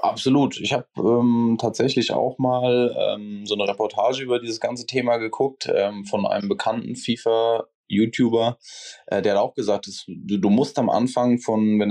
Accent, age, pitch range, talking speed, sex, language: German, 20-39, 105-125 Hz, 165 wpm, male, German